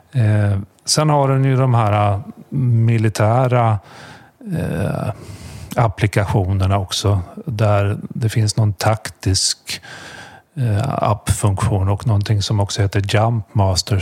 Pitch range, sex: 100-115 Hz, male